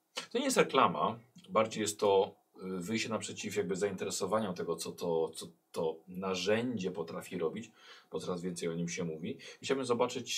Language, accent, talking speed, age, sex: Polish, native, 155 wpm, 40-59, male